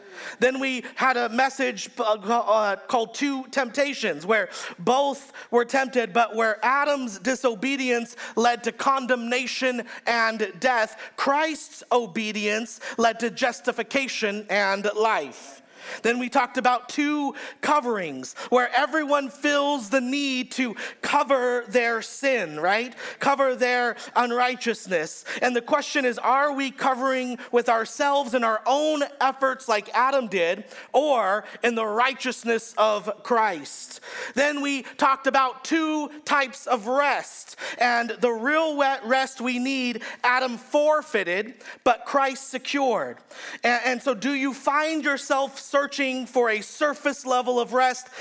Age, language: 40-59, English